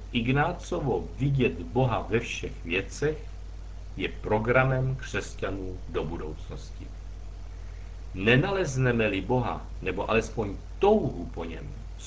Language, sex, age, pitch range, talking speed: Czech, male, 60-79, 90-130 Hz, 95 wpm